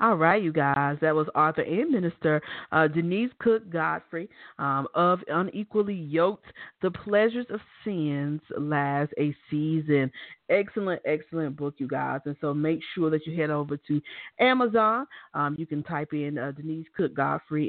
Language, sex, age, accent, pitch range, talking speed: English, female, 40-59, American, 145-185 Hz, 165 wpm